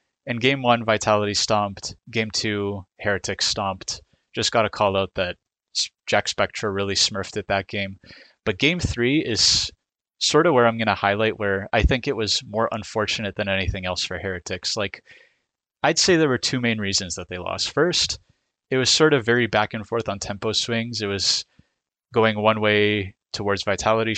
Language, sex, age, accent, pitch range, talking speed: English, male, 20-39, American, 95-115 Hz, 185 wpm